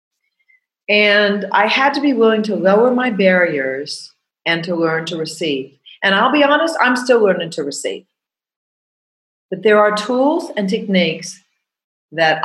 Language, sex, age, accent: English, female, 40-59, American